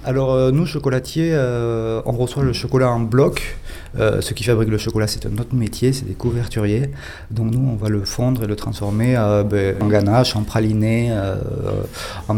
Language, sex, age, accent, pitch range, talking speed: French, male, 30-49, French, 110-135 Hz, 195 wpm